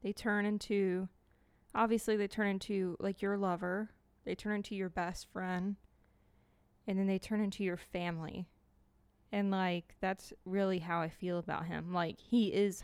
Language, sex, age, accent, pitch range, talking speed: English, female, 20-39, American, 175-205 Hz, 165 wpm